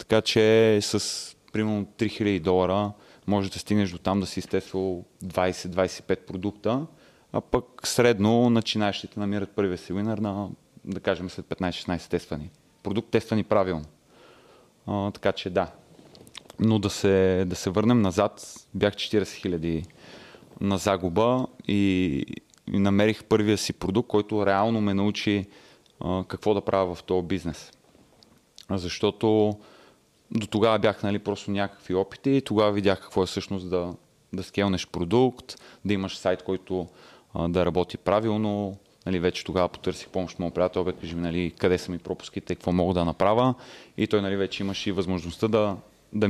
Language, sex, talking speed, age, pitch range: Bulgarian, male, 155 wpm, 30-49, 90-105 Hz